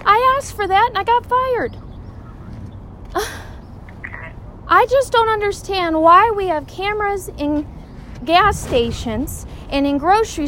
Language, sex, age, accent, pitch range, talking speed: English, female, 40-59, American, 275-385 Hz, 125 wpm